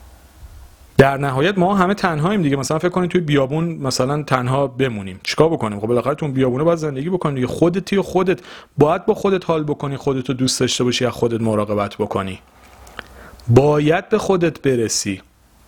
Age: 40-59